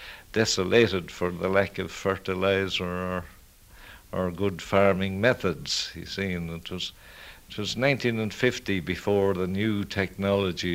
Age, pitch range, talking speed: 60-79, 85-100 Hz, 130 wpm